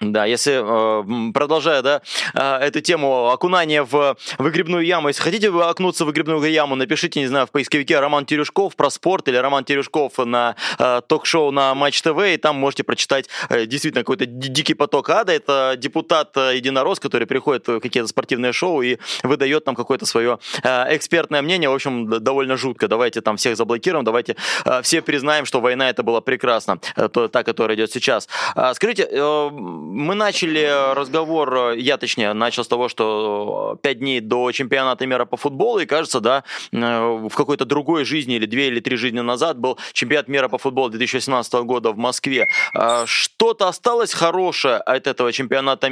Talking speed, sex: 160 wpm, male